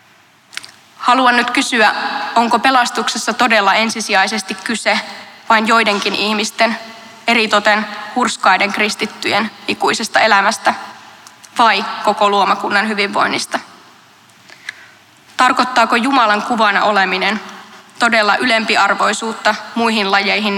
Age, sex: 20-39, female